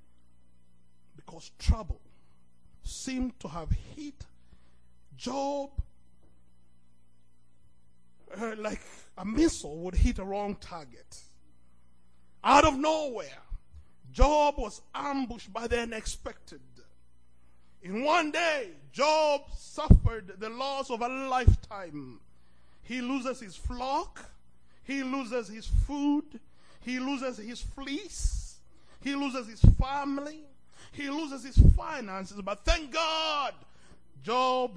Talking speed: 100 wpm